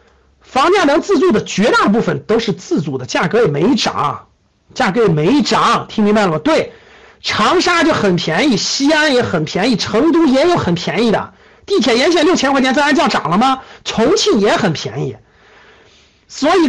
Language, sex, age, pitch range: Chinese, male, 50-69, 215-345 Hz